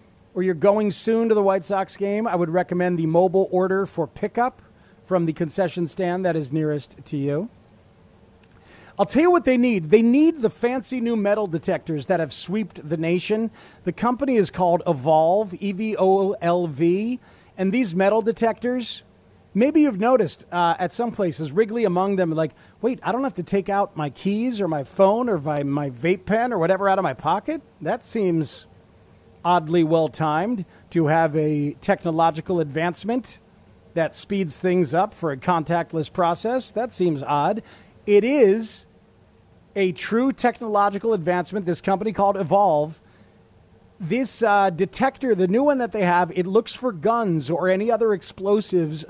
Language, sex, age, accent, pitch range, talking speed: English, male, 40-59, American, 165-215 Hz, 165 wpm